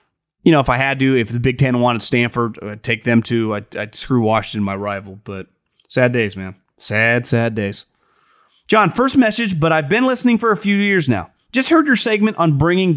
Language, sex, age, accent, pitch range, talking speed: English, male, 30-49, American, 125-200 Hz, 220 wpm